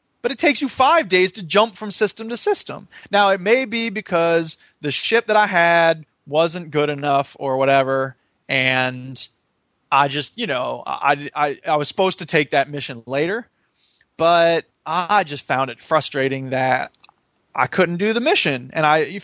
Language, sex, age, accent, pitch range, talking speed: English, male, 20-39, American, 145-210 Hz, 180 wpm